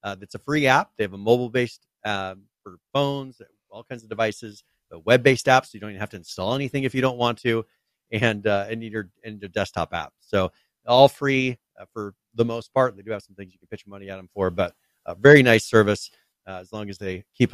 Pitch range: 100-125 Hz